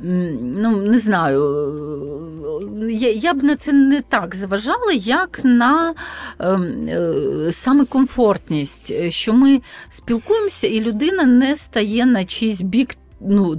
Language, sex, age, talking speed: Ukrainian, female, 40-59, 120 wpm